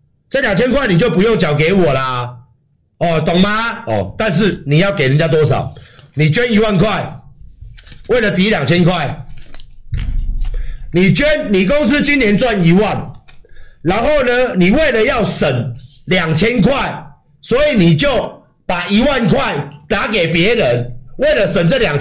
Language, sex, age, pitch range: Chinese, male, 50-69, 150-250 Hz